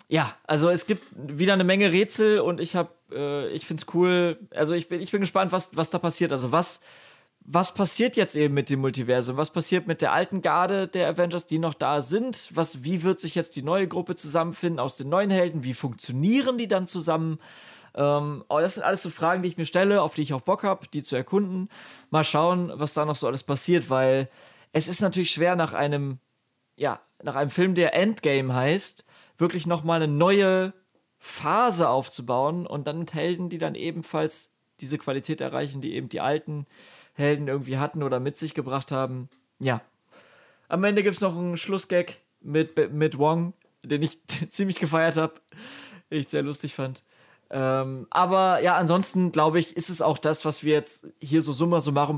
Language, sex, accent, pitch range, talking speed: German, male, German, 145-180 Hz, 200 wpm